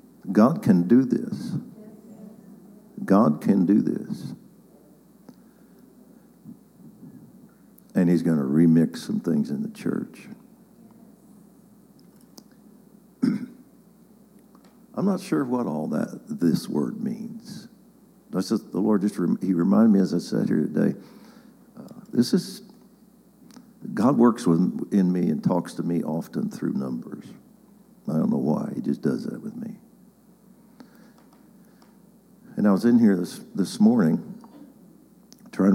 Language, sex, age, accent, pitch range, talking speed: English, male, 60-79, American, 205-230 Hz, 125 wpm